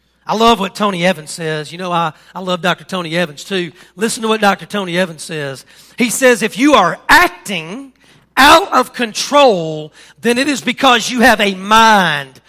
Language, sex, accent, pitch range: English, male, American, 180-245 Hz